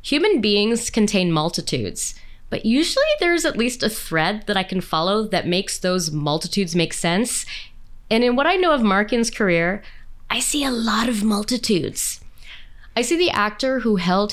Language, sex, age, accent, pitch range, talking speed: English, female, 20-39, American, 170-245 Hz, 170 wpm